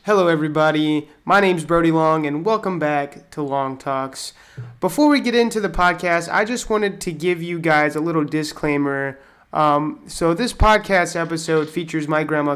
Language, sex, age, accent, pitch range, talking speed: English, male, 20-39, American, 150-185 Hz, 175 wpm